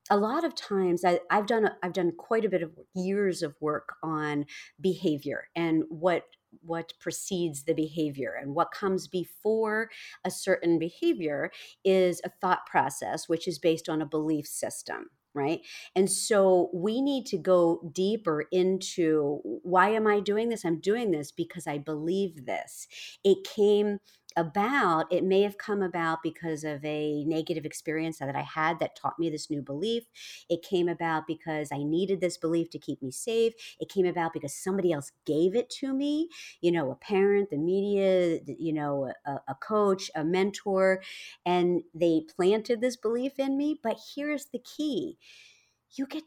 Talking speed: 170 wpm